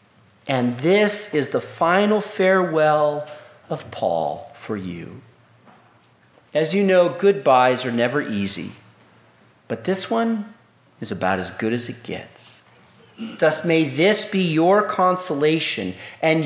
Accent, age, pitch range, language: American, 40-59, 130-210 Hz, English